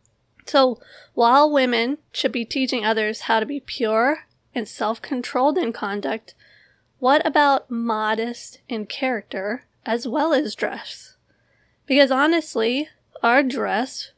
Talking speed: 120 wpm